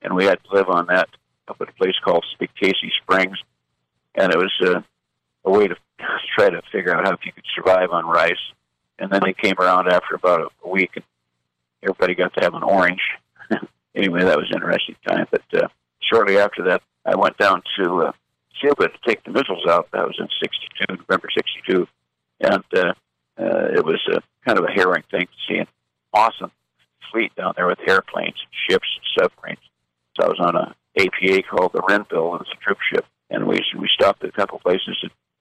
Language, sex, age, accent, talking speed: English, male, 50-69, American, 205 wpm